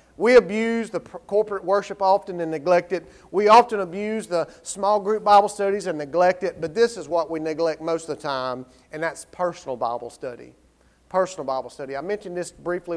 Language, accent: English, American